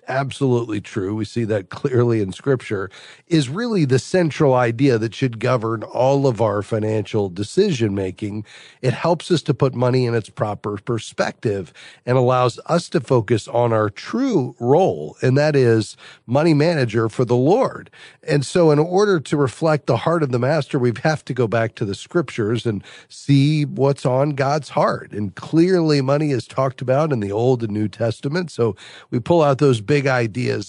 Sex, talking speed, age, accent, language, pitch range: male, 180 wpm, 40-59, American, English, 115-145 Hz